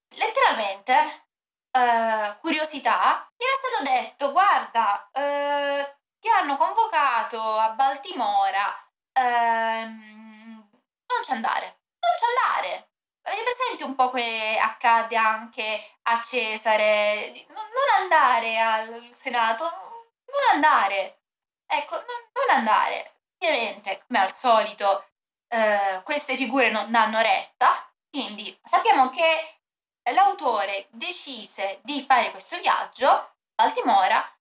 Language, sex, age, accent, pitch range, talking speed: Italian, female, 20-39, native, 225-370 Hz, 105 wpm